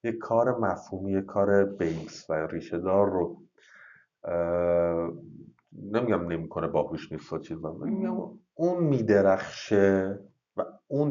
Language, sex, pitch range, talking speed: Persian, male, 90-115 Hz, 120 wpm